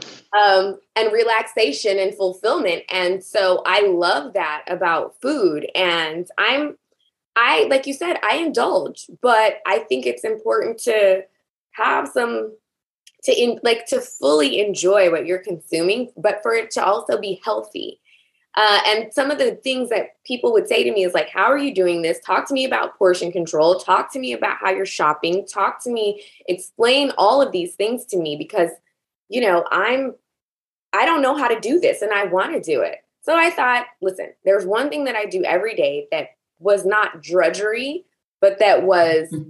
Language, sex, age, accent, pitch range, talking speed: English, female, 20-39, American, 180-265 Hz, 185 wpm